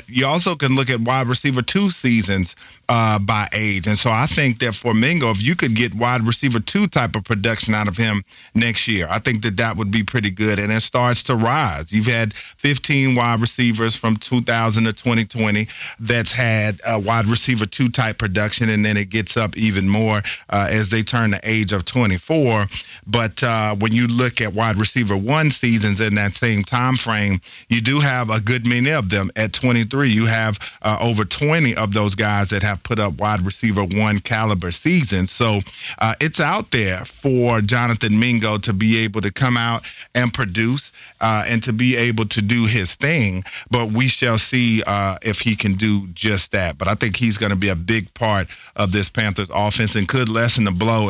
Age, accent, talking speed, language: 40-59, American, 210 wpm, English